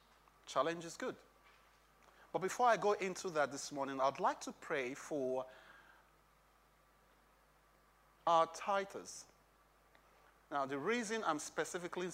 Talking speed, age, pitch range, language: 115 wpm, 30-49, 150-205 Hz, English